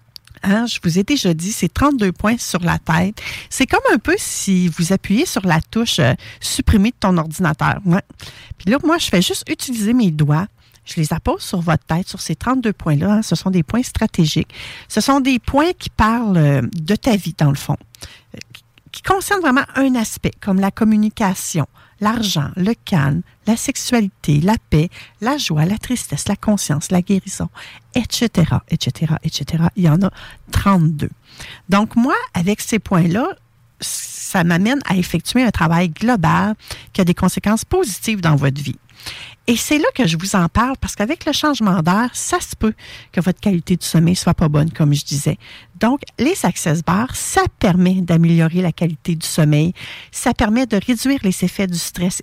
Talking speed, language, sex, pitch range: 190 wpm, English, female, 160-235 Hz